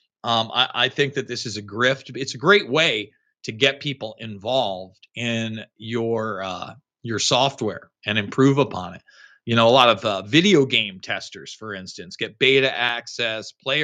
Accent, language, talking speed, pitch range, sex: American, English, 180 wpm, 120-165 Hz, male